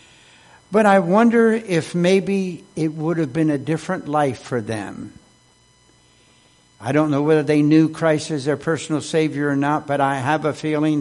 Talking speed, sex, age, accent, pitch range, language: 175 wpm, male, 60-79, American, 120-160 Hz, English